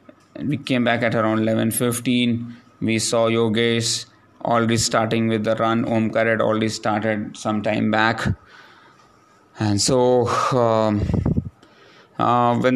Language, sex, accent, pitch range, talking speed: English, male, Indian, 110-125 Hz, 120 wpm